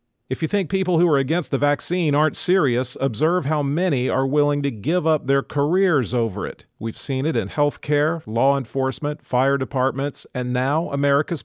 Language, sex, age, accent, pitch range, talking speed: English, male, 40-59, American, 120-145 Hz, 190 wpm